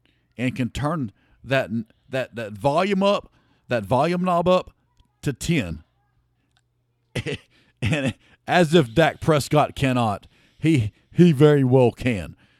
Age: 50-69